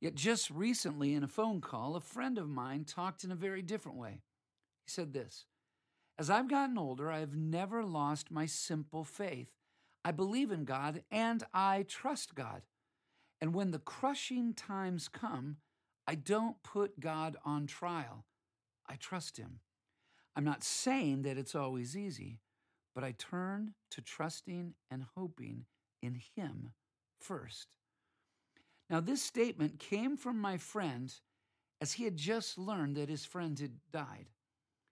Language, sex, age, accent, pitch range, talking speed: English, male, 50-69, American, 140-195 Hz, 150 wpm